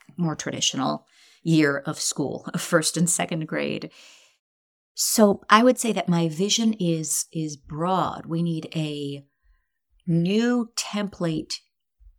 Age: 30-49